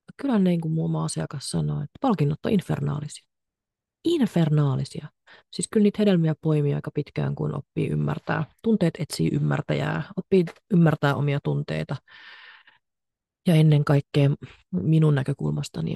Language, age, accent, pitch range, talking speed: Finnish, 30-49, native, 140-175 Hz, 125 wpm